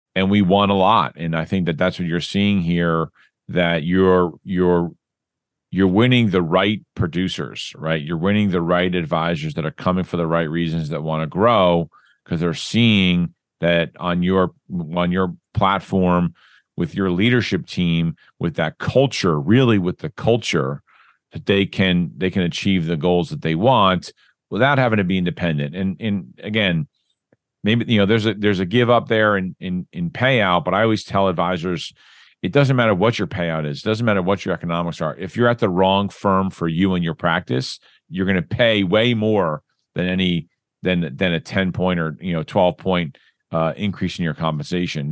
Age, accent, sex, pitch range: 40-59, American, male, 85-100 Hz